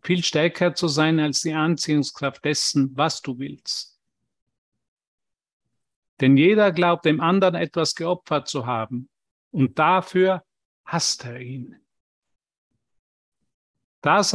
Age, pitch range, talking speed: 50-69, 140-180 Hz, 110 wpm